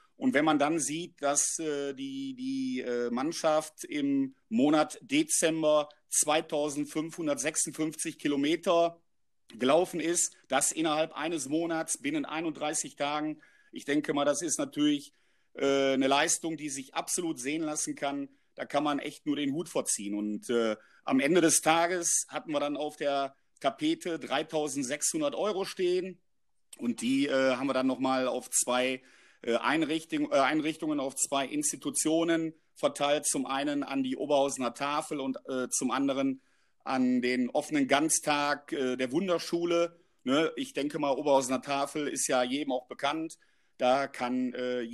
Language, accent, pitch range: German, German, 140-180 Hz